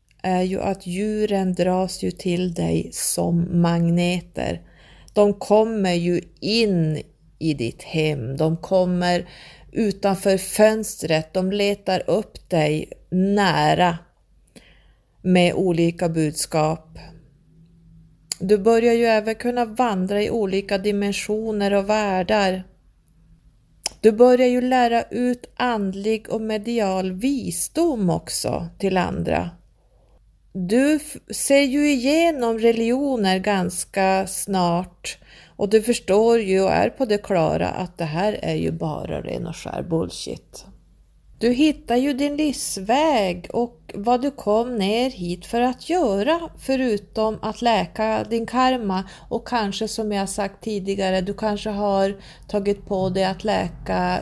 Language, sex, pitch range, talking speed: Swedish, female, 175-225 Hz, 120 wpm